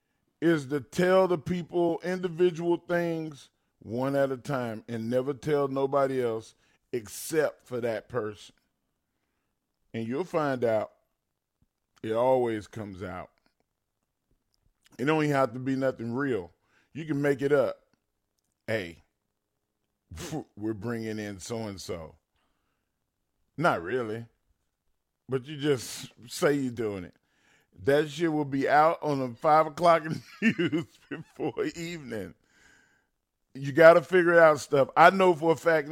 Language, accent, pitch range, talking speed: English, American, 110-150 Hz, 130 wpm